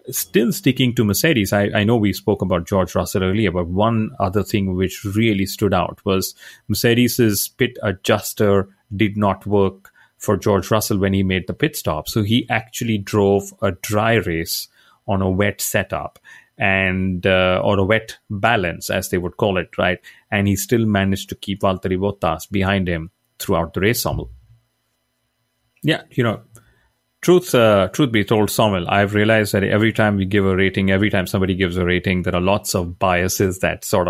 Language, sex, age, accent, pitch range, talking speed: English, male, 30-49, Indian, 95-110 Hz, 185 wpm